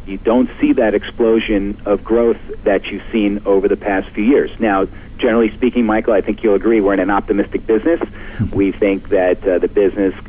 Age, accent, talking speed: 50-69, American, 200 wpm